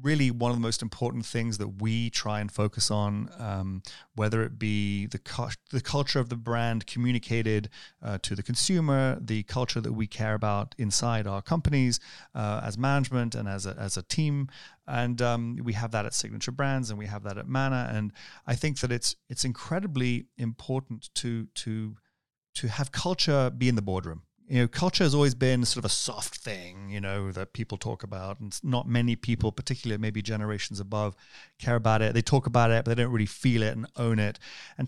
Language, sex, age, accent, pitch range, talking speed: English, male, 30-49, British, 110-130 Hz, 205 wpm